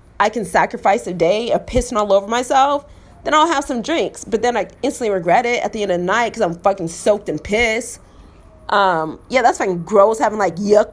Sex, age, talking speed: female, 30-49, 225 wpm